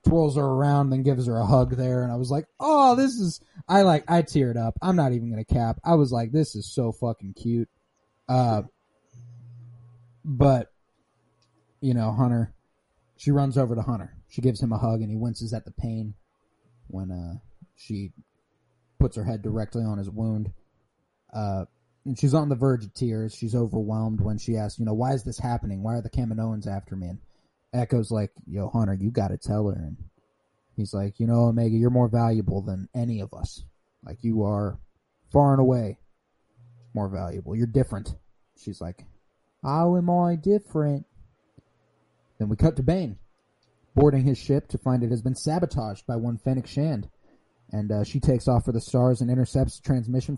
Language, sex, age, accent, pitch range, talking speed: English, male, 30-49, American, 110-135 Hz, 185 wpm